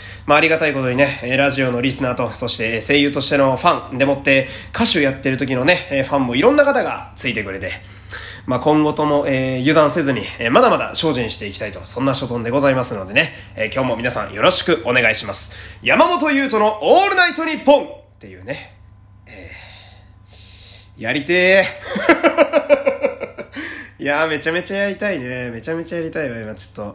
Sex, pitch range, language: male, 105-160 Hz, Japanese